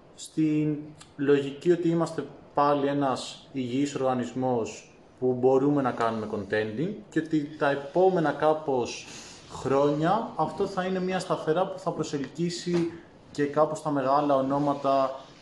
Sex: male